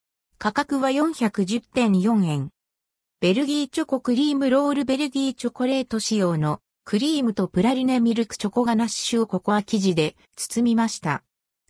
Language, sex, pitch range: Japanese, female, 180-260 Hz